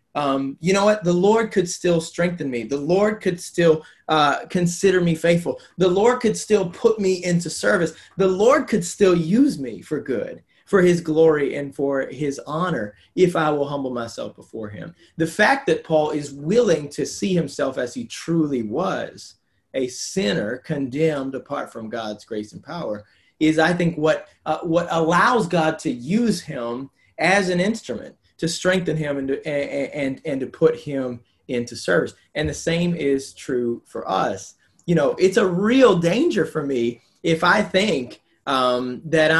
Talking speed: 180 wpm